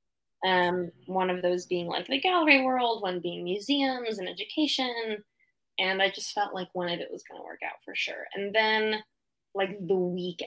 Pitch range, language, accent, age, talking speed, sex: 180-220 Hz, English, American, 10-29, 195 wpm, female